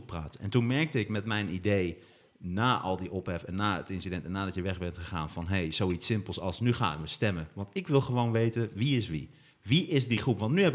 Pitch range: 100-140 Hz